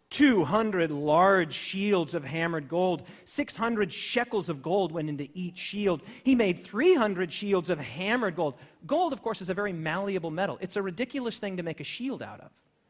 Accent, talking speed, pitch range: American, 180 wpm, 175-235 Hz